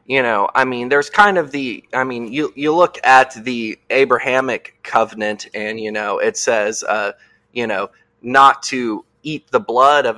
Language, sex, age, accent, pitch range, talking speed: English, male, 20-39, American, 115-170 Hz, 185 wpm